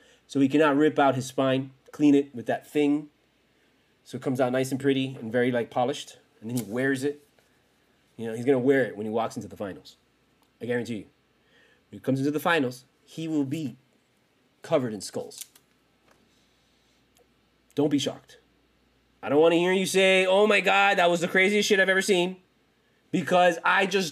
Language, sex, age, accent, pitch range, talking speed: English, male, 30-49, American, 130-195 Hz, 200 wpm